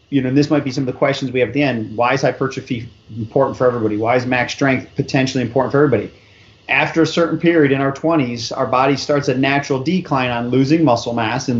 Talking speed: 245 wpm